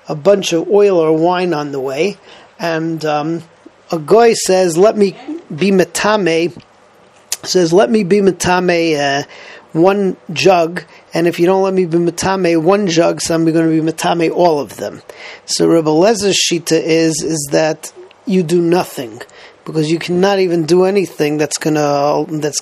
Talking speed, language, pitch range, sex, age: 165 wpm, English, 155-185 Hz, male, 40-59